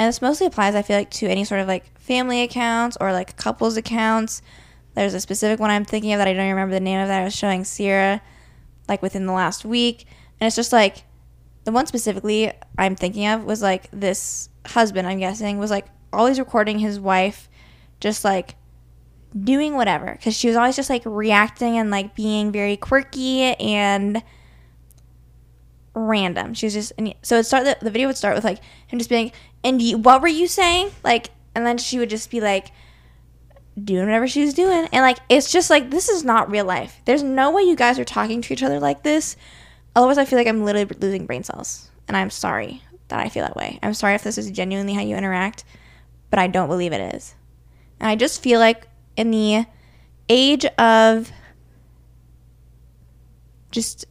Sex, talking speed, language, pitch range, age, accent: female, 200 wpm, English, 185-235 Hz, 10-29, American